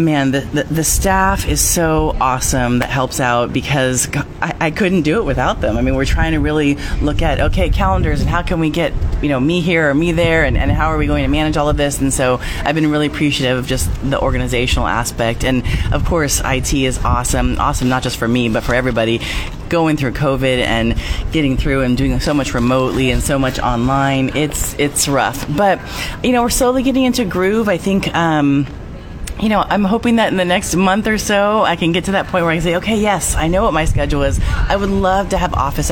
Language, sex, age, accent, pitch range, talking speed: English, female, 30-49, American, 130-175 Hz, 235 wpm